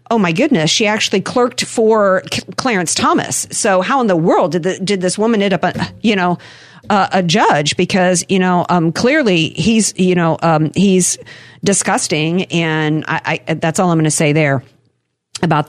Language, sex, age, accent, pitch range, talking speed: English, female, 50-69, American, 165-225 Hz, 185 wpm